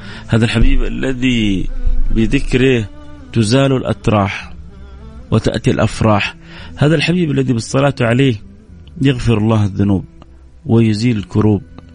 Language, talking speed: Arabic, 90 wpm